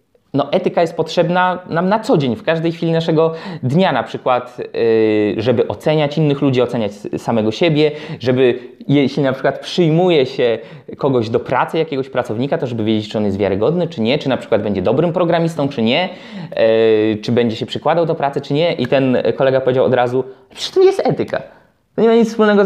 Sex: male